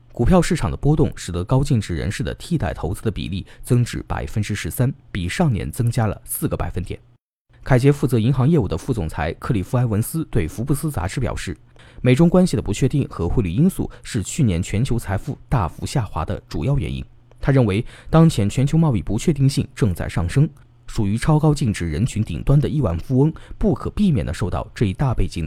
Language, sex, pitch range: Chinese, male, 100-140 Hz